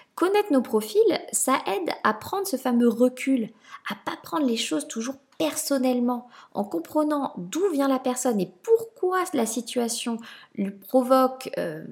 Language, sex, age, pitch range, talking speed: French, female, 20-39, 210-285 Hz, 150 wpm